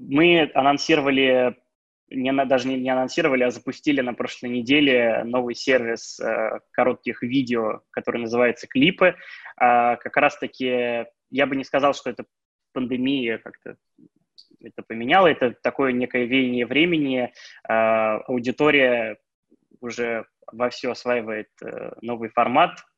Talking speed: 110 wpm